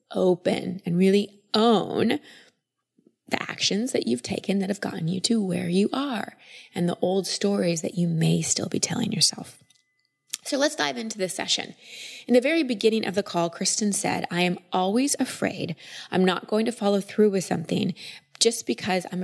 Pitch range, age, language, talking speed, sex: 175-220 Hz, 20-39, English, 180 wpm, female